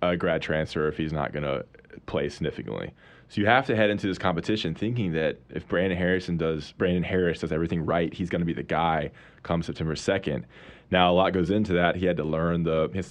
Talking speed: 235 wpm